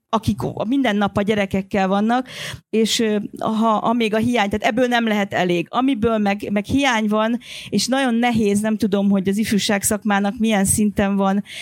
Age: 40-59